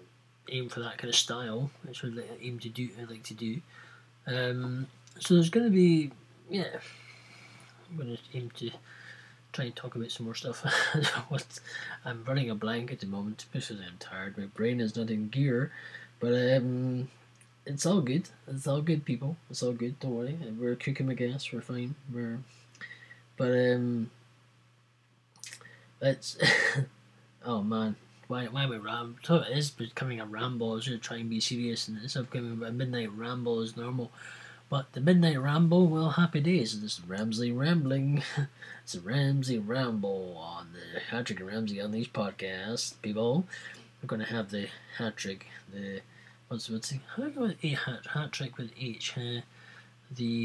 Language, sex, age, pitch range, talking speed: English, male, 20-39, 115-135 Hz, 175 wpm